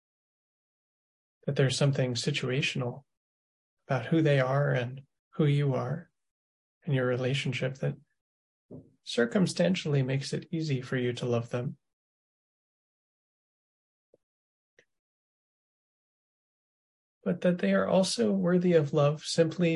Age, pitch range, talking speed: 30-49, 125-155 Hz, 105 wpm